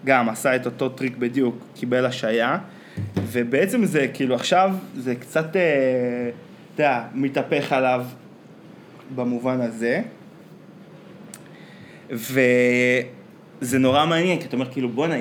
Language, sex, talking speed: Hebrew, male, 105 wpm